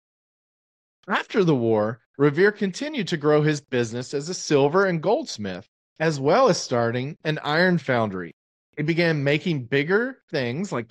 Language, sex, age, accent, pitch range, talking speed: English, male, 40-59, American, 130-185 Hz, 150 wpm